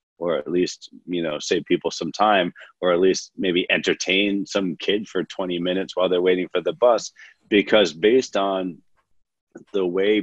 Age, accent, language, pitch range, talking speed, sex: 40-59, American, English, 85-100 Hz, 175 wpm, male